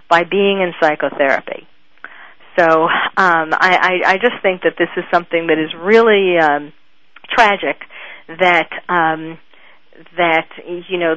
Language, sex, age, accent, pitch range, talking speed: English, female, 40-59, American, 165-205 Hz, 135 wpm